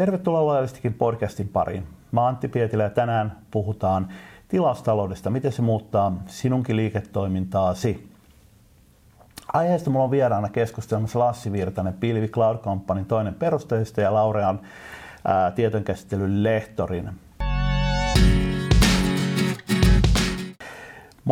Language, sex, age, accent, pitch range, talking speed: Finnish, male, 50-69, native, 95-115 Hz, 95 wpm